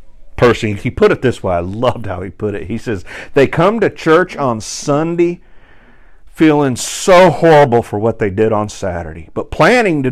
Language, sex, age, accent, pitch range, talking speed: English, male, 50-69, American, 110-150 Hz, 190 wpm